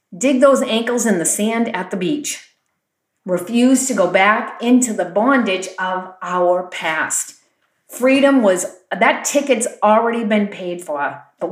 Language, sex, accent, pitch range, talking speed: English, female, American, 185-250 Hz, 145 wpm